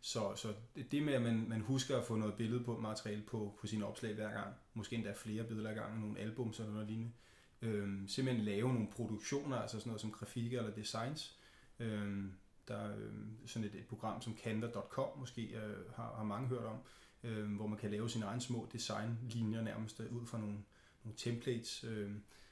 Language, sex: Danish, male